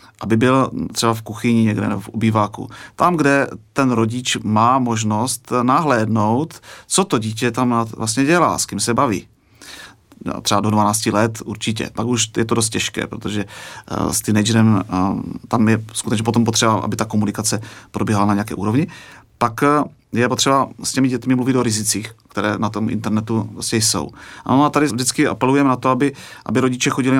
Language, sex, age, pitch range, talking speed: Czech, male, 30-49, 110-120 Hz, 170 wpm